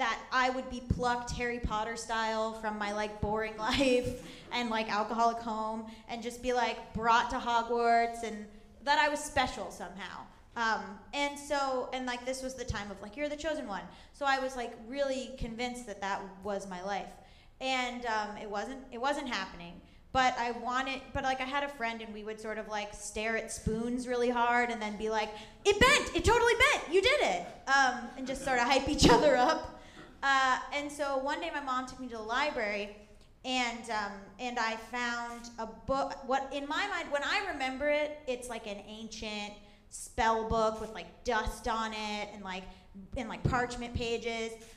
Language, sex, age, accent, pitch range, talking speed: English, female, 20-39, American, 220-270 Hz, 200 wpm